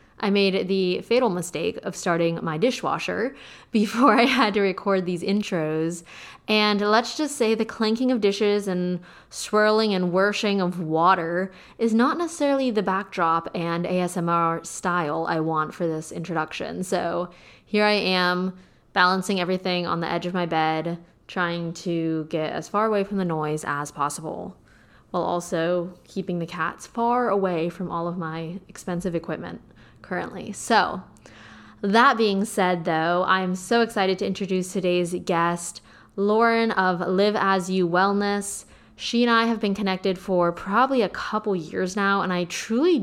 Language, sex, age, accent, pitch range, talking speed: English, female, 20-39, American, 170-205 Hz, 160 wpm